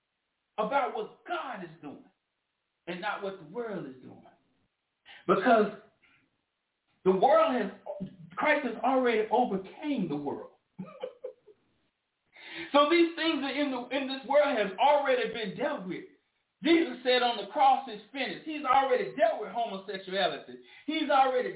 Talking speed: 140 wpm